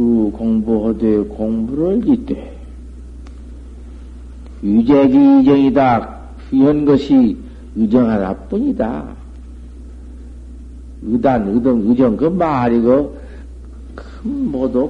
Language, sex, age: Korean, male, 50-69